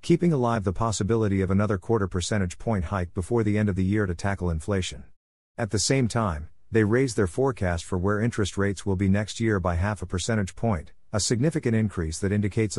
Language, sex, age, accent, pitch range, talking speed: English, male, 50-69, American, 90-115 Hz, 210 wpm